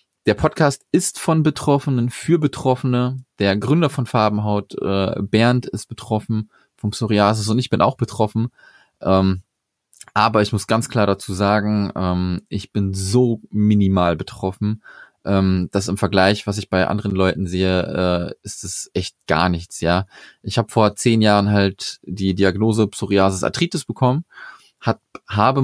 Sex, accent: male, German